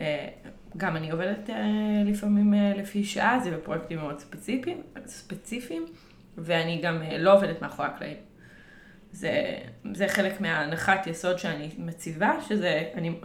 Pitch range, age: 170-205 Hz, 20-39